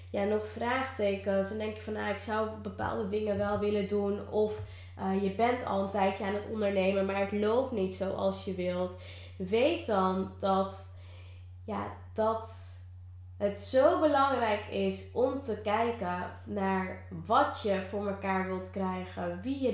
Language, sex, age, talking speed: Dutch, female, 20-39, 160 wpm